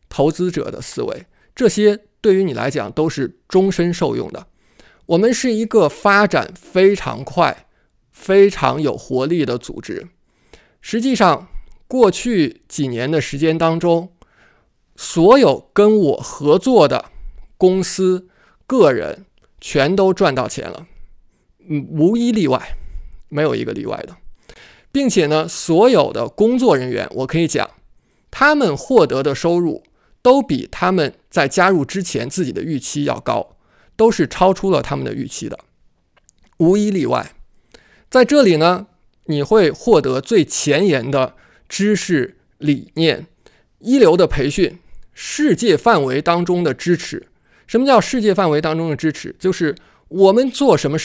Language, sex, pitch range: Chinese, male, 155-205 Hz